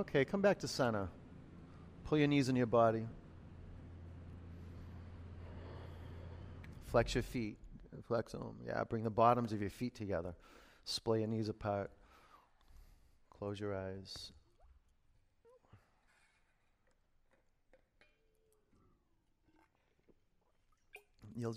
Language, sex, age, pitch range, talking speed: English, male, 30-49, 85-115 Hz, 90 wpm